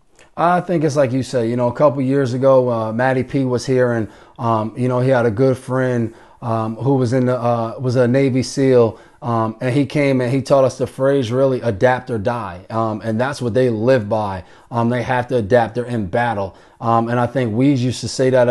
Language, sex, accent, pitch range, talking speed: English, male, American, 120-135 Hz, 245 wpm